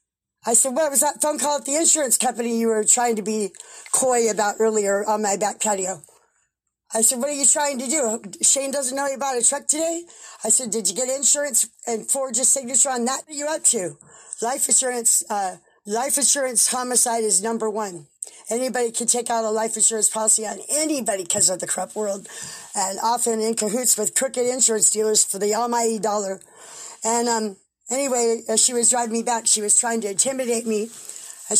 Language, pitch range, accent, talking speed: English, 215-255 Hz, American, 205 wpm